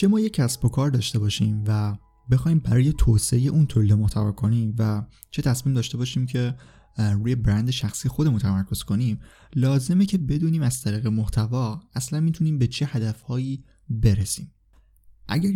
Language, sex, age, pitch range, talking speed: Persian, male, 20-39, 110-140 Hz, 160 wpm